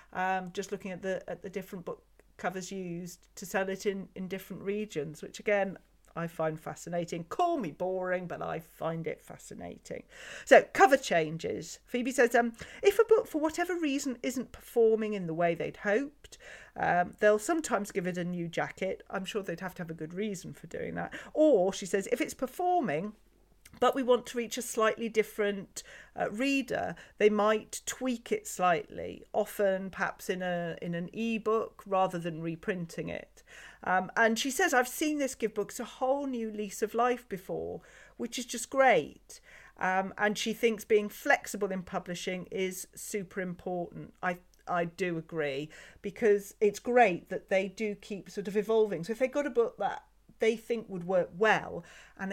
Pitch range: 185-240 Hz